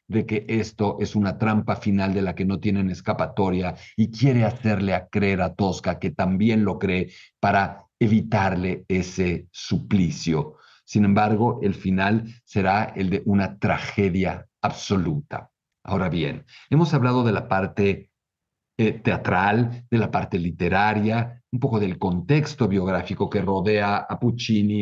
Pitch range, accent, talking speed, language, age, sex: 95-115 Hz, Mexican, 145 wpm, Spanish, 50-69, male